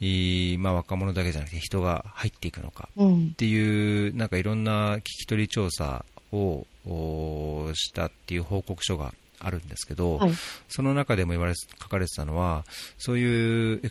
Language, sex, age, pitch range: Japanese, male, 40-59, 85-115 Hz